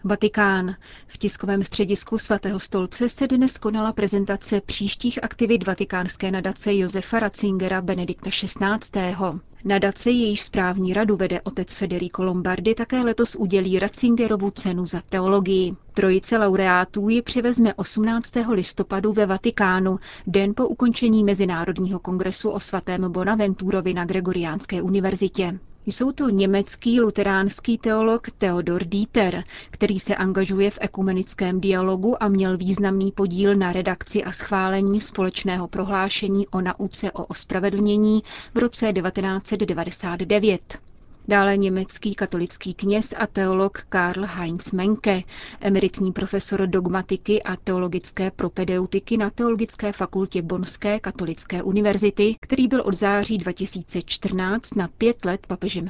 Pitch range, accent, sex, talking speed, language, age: 185-215 Hz, native, female, 120 wpm, Czech, 30-49